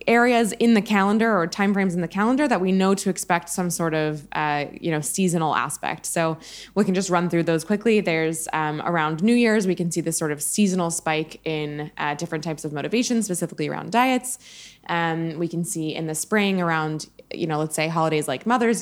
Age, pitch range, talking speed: 20-39, 160-195 Hz, 215 wpm